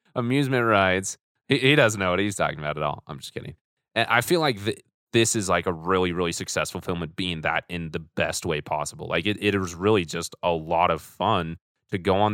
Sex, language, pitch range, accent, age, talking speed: male, English, 90-125 Hz, American, 30-49, 230 wpm